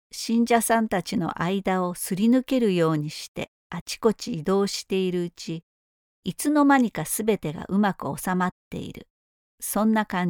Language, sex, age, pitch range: Japanese, female, 50-69, 170-225 Hz